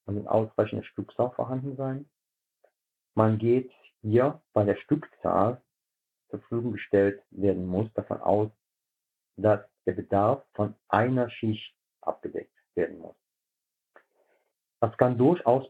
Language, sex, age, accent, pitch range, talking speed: German, male, 50-69, German, 100-120 Hz, 120 wpm